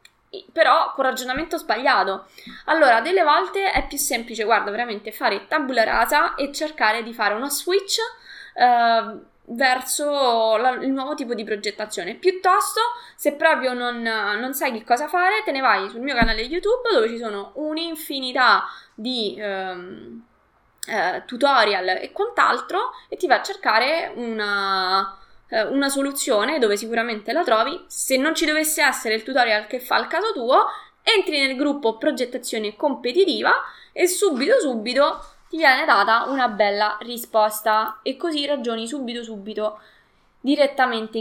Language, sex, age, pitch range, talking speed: Italian, female, 20-39, 220-310 Hz, 140 wpm